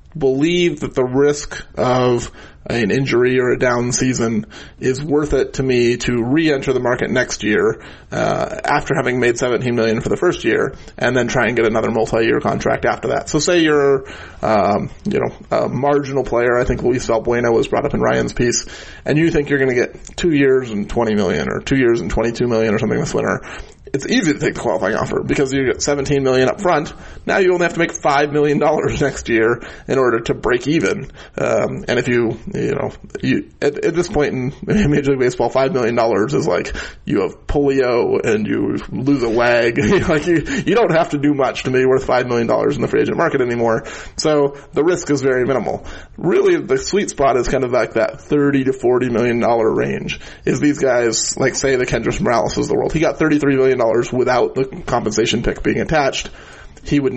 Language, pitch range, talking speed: English, 120-145 Hz, 215 wpm